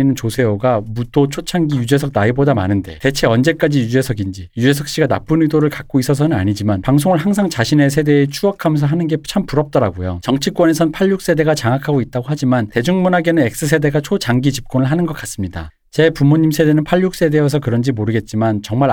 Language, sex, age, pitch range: Korean, male, 40-59, 115-160 Hz